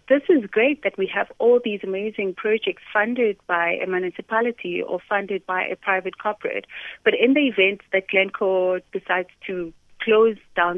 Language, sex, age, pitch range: English, female, 30-49, 190-270 Hz